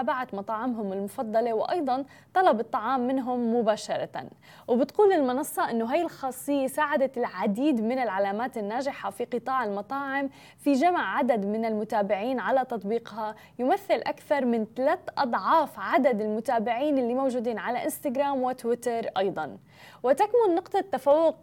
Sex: female